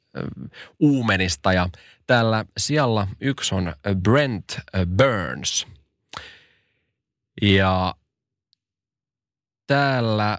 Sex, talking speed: male, 60 wpm